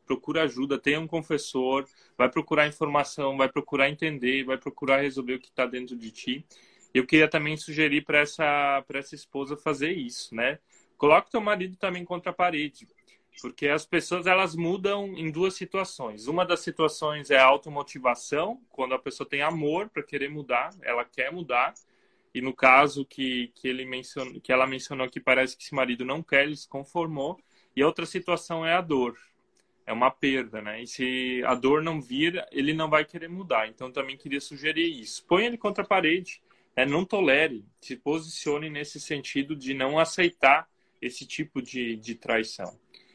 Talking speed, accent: 180 wpm, Brazilian